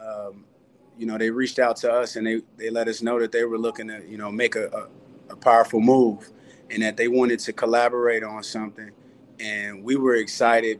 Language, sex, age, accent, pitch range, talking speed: English, male, 30-49, American, 115-135 Hz, 210 wpm